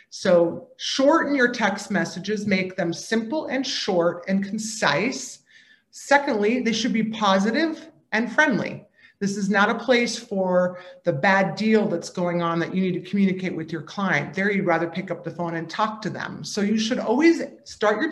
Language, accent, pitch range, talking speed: English, American, 180-225 Hz, 185 wpm